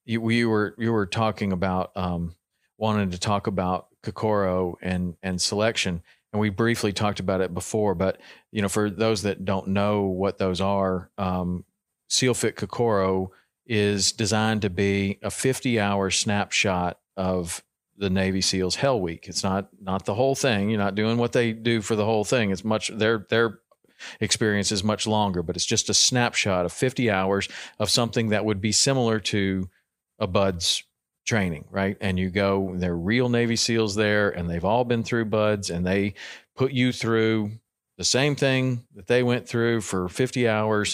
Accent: American